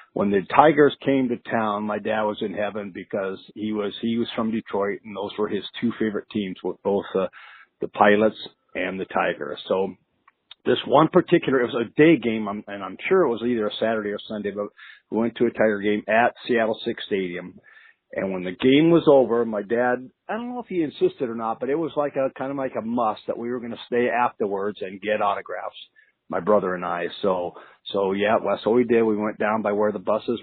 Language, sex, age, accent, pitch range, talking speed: English, male, 50-69, American, 105-135 Hz, 235 wpm